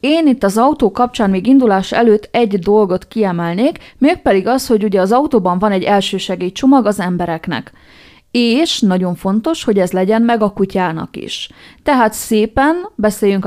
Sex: female